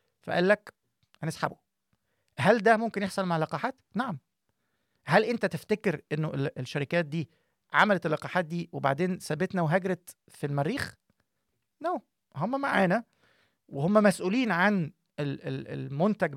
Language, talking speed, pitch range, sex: Arabic, 115 wpm, 145-190 Hz, male